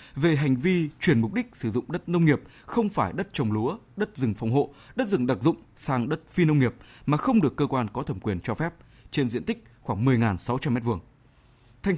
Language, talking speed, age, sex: Vietnamese, 230 wpm, 20-39, male